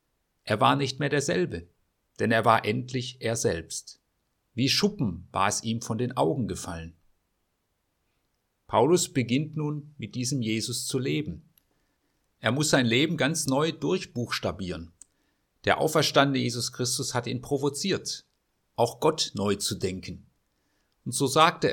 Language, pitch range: German, 110-140 Hz